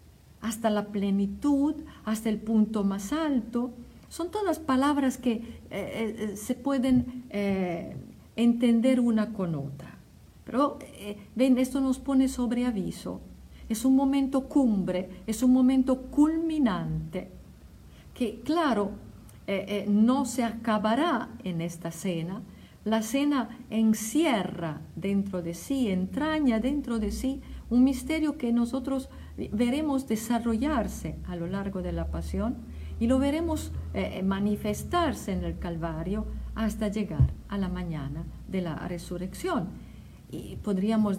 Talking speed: 125 wpm